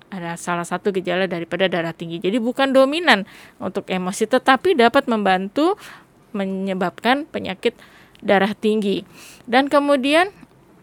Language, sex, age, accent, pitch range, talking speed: Indonesian, female, 20-39, native, 205-275 Hz, 115 wpm